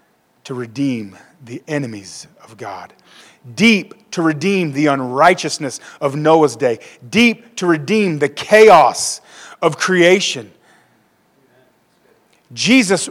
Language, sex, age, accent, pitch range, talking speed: English, male, 40-59, American, 140-195 Hz, 100 wpm